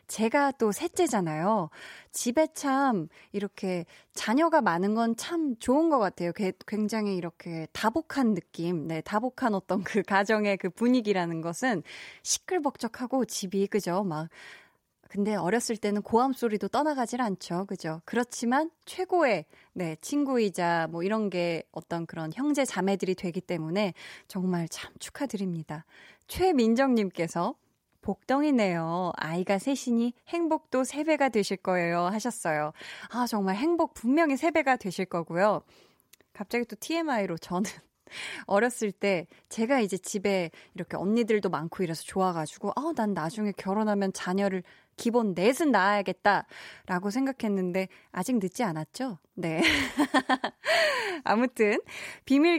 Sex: female